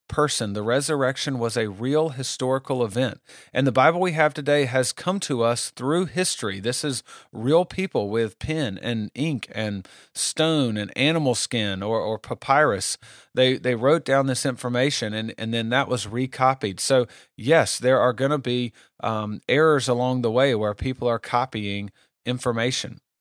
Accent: American